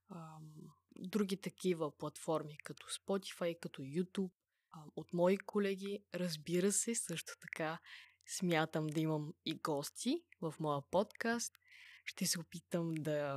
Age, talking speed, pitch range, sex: 20-39, 115 wpm, 165-190 Hz, female